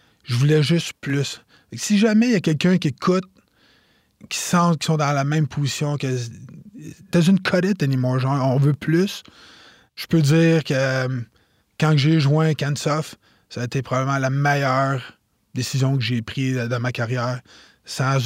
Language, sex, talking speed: French, male, 180 wpm